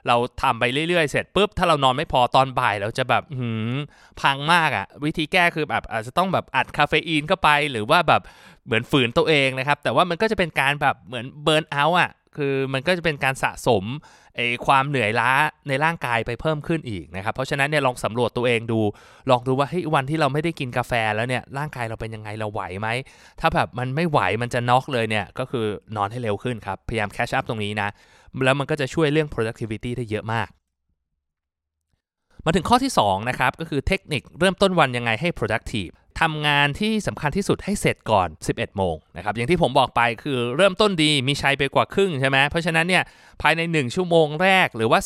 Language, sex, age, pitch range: Thai, male, 20-39, 115-155 Hz